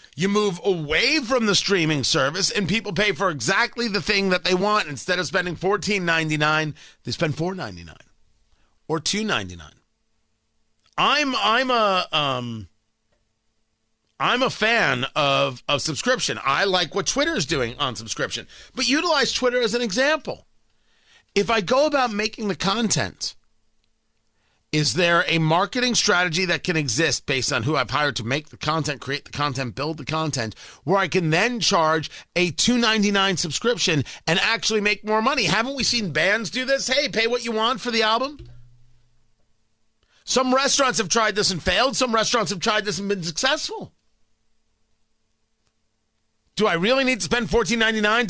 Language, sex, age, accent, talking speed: English, male, 40-59, American, 155 wpm